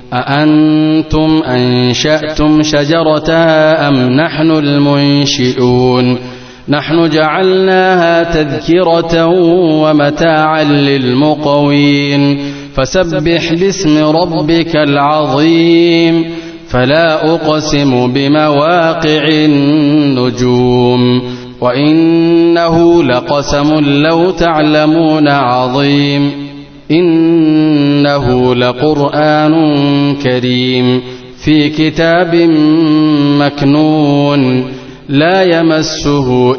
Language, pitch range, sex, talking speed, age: English, 140-160 Hz, male, 55 wpm, 30-49